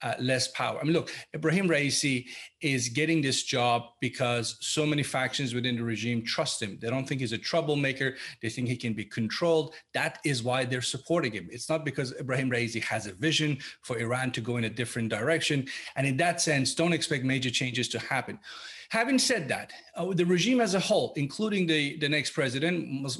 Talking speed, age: 205 wpm, 40-59